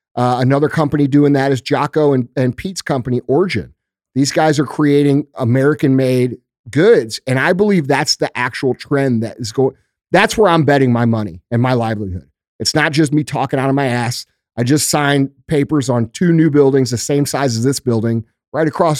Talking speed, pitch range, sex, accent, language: 195 wpm, 130-155 Hz, male, American, English